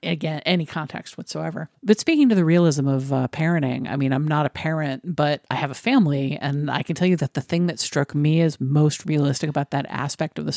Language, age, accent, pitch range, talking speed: English, 50-69, American, 145-185 Hz, 240 wpm